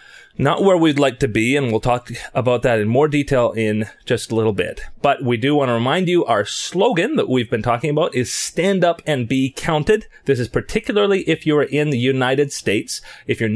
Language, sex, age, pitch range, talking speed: English, male, 30-49, 115-150 Hz, 225 wpm